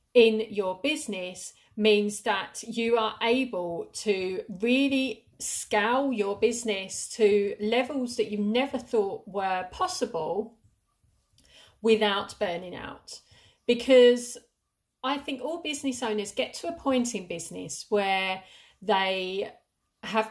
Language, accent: English, British